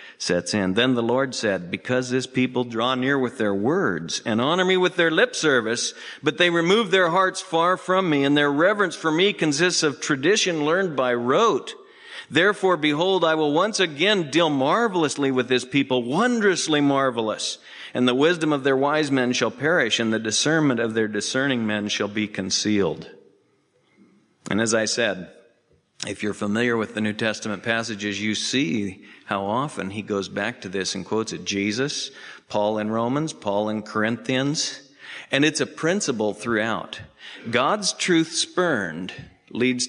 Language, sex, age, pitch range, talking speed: English, male, 50-69, 110-155 Hz, 170 wpm